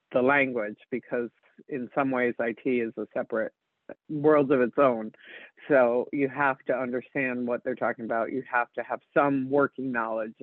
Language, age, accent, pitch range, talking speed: English, 50-69, American, 120-150 Hz, 175 wpm